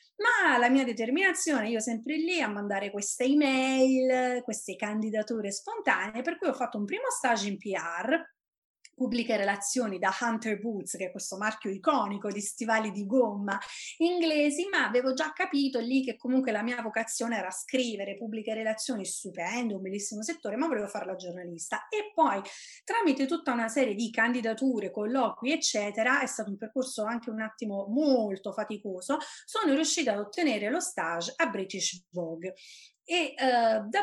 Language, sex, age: Italian, female, 30-49